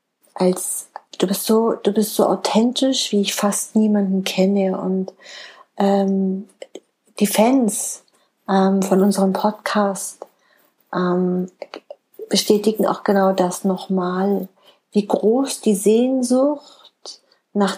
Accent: German